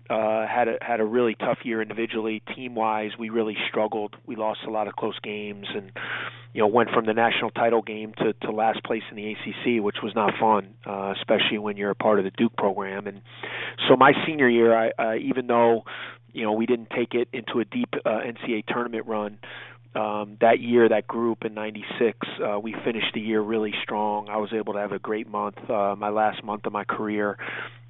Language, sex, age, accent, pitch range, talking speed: English, male, 30-49, American, 105-115 Hz, 220 wpm